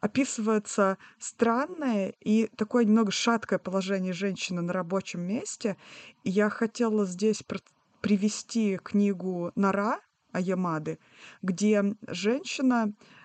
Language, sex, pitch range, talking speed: Russian, female, 195-230 Hz, 90 wpm